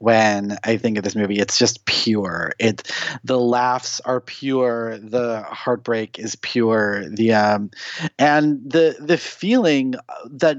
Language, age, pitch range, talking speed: English, 30-49, 115-145 Hz, 140 wpm